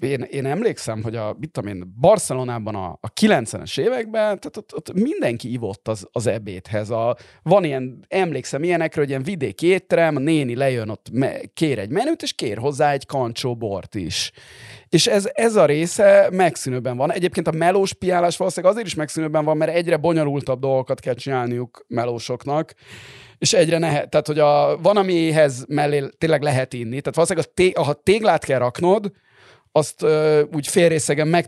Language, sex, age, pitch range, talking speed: Hungarian, male, 30-49, 120-170 Hz, 170 wpm